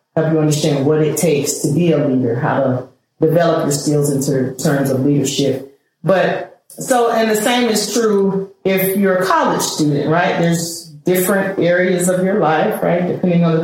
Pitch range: 155-190 Hz